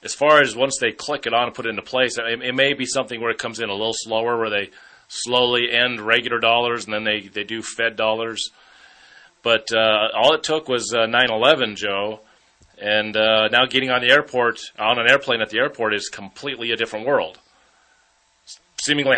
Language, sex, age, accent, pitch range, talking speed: English, male, 30-49, American, 115-135 Hz, 210 wpm